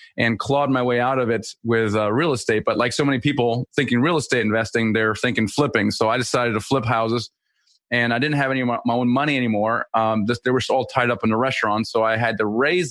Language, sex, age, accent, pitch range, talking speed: English, male, 30-49, American, 110-130 Hz, 250 wpm